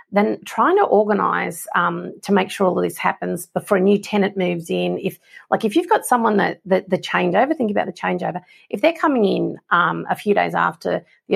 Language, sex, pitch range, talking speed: English, female, 195-255 Hz, 220 wpm